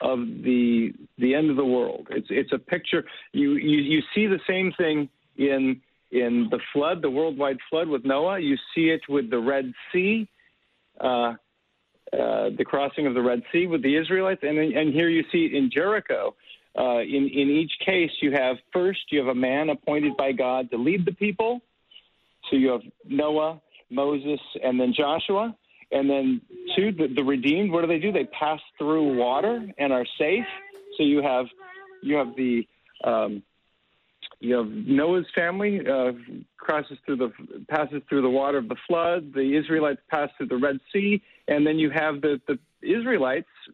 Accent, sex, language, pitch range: American, male, English, 135-175 Hz